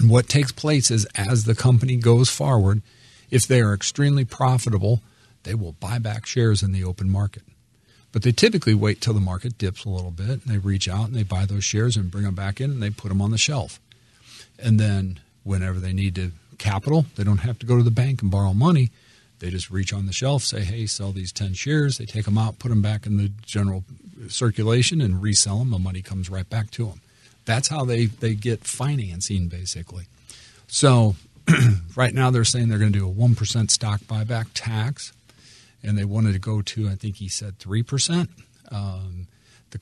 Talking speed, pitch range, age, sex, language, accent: 215 wpm, 100-120 Hz, 50-69, male, English, American